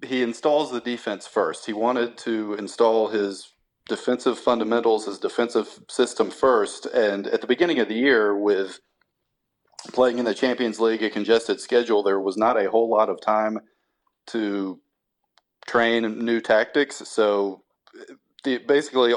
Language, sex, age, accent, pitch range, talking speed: English, male, 40-59, American, 100-125 Hz, 145 wpm